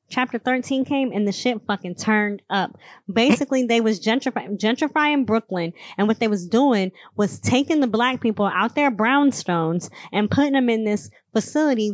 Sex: female